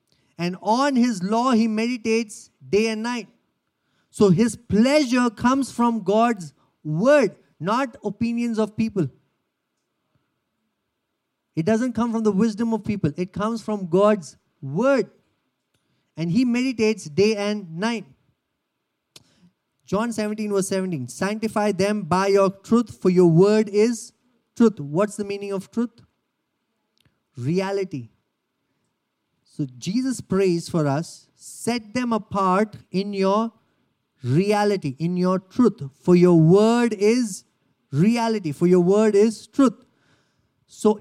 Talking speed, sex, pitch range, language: 125 wpm, male, 185-235 Hz, English